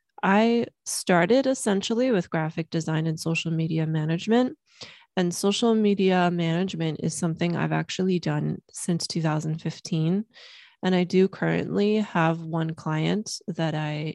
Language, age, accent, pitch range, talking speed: English, 20-39, American, 160-200 Hz, 125 wpm